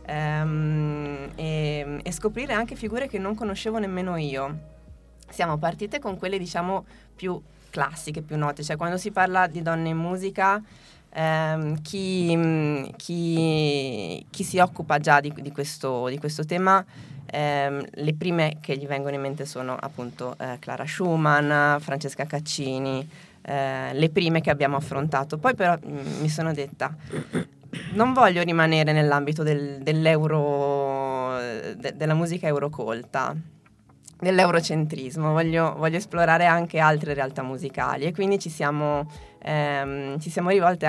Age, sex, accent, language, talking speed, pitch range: 20-39, female, native, Italian, 130 wpm, 145-175 Hz